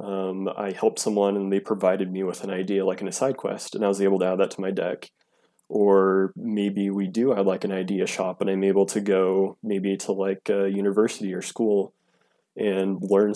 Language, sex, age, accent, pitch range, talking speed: English, male, 20-39, American, 100-115 Hz, 220 wpm